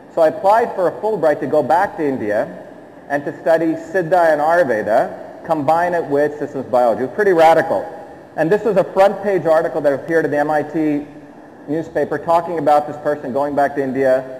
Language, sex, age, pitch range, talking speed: English, male, 40-59, 145-180 Hz, 195 wpm